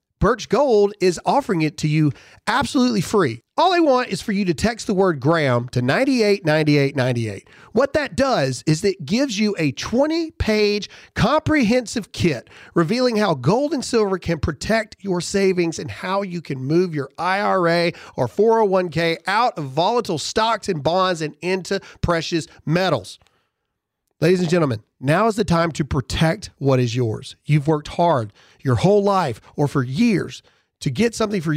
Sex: male